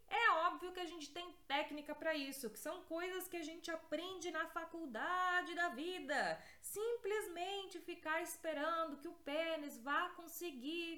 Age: 20-39